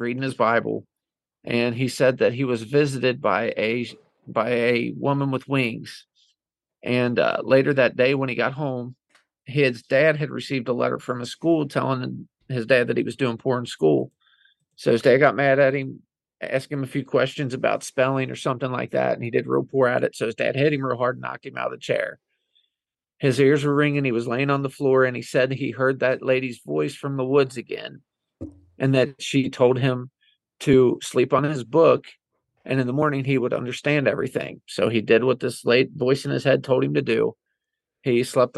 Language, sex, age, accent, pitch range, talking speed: English, male, 40-59, American, 125-140 Hz, 215 wpm